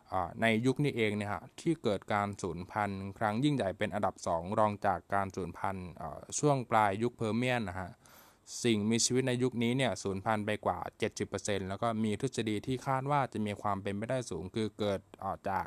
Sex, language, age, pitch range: male, Thai, 20-39, 100-120 Hz